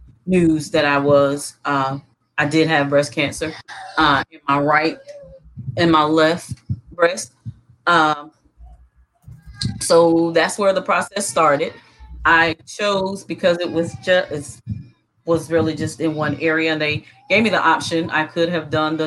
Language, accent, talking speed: English, American, 155 wpm